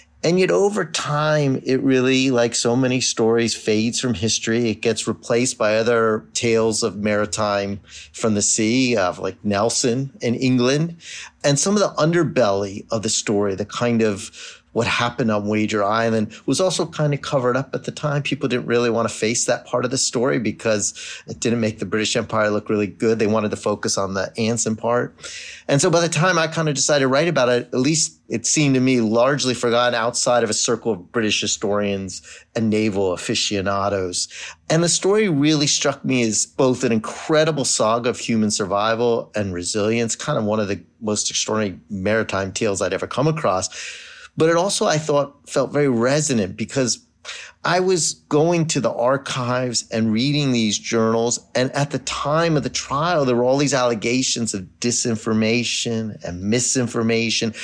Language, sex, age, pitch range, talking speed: English, male, 30-49, 110-140 Hz, 185 wpm